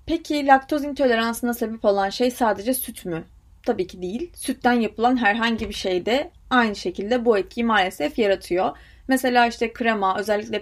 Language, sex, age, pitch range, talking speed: Turkish, female, 30-49, 195-260 Hz, 160 wpm